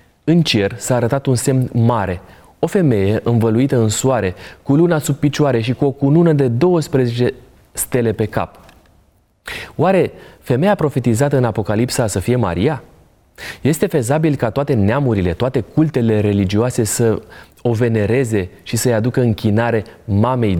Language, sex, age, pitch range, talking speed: Romanian, male, 30-49, 105-130 Hz, 145 wpm